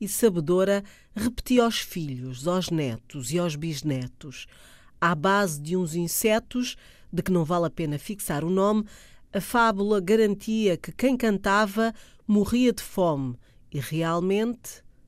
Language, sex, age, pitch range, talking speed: Portuguese, female, 40-59, 155-200 Hz, 140 wpm